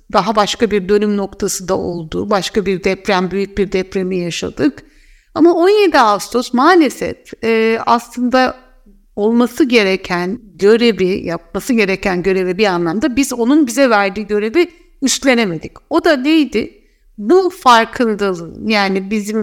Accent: native